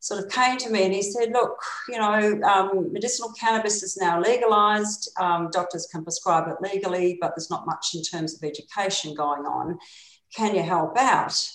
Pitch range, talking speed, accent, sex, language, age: 170-210 Hz, 190 wpm, Australian, female, English, 50-69